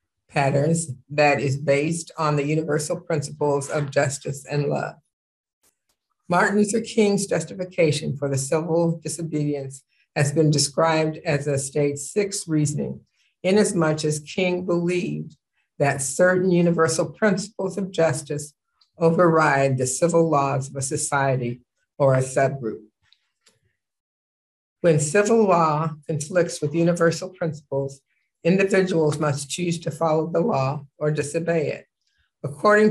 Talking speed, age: 120 wpm, 50-69